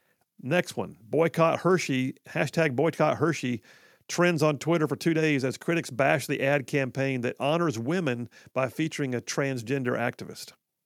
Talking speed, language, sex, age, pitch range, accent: 150 wpm, English, male, 50-69, 135-180 Hz, American